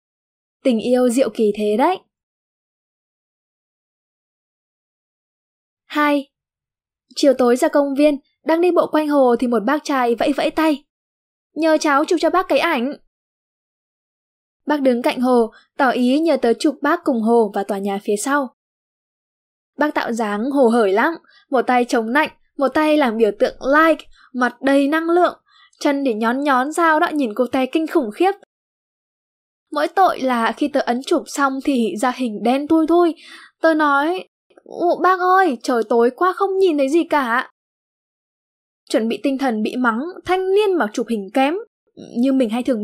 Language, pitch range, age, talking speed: Vietnamese, 245-320 Hz, 10-29, 170 wpm